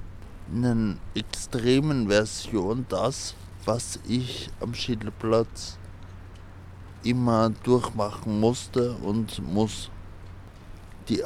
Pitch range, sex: 95-120 Hz, male